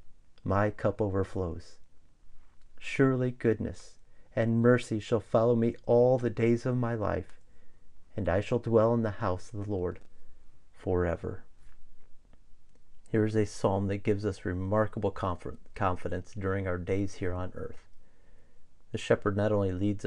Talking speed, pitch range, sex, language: 140 wpm, 85-115 Hz, male, English